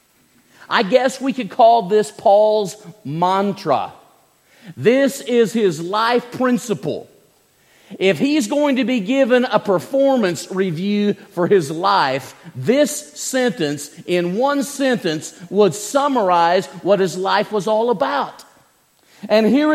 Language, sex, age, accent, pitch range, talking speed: English, male, 50-69, American, 185-260 Hz, 120 wpm